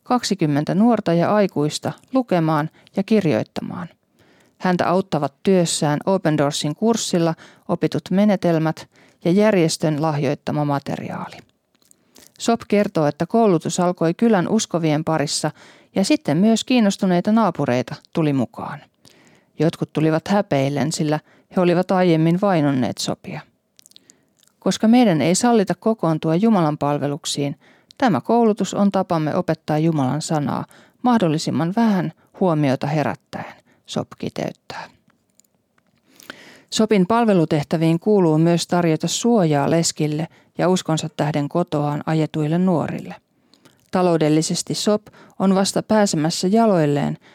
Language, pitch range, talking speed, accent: Finnish, 155-195 Hz, 105 wpm, native